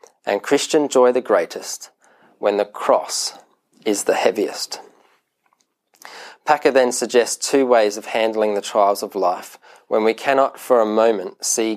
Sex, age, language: male, 20-39, English